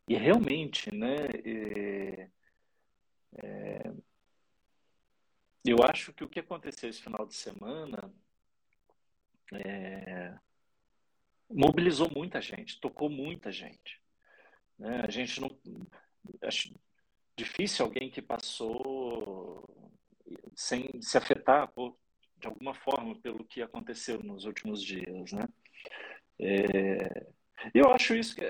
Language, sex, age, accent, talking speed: Portuguese, male, 40-59, Brazilian, 105 wpm